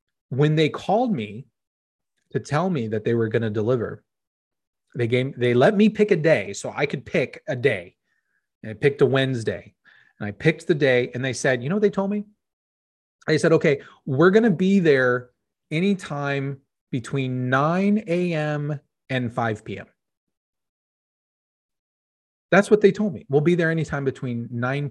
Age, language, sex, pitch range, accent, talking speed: 30-49, English, male, 120-160 Hz, American, 175 wpm